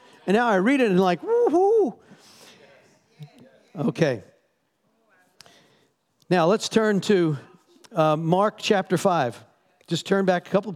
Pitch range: 155-205 Hz